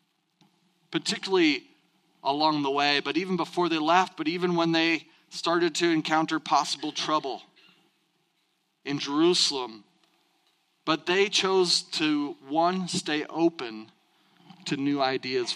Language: English